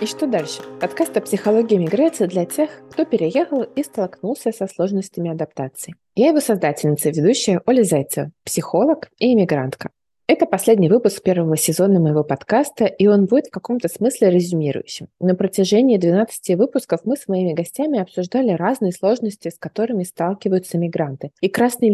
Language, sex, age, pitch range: Russian, female, 20-39, 175-230 Hz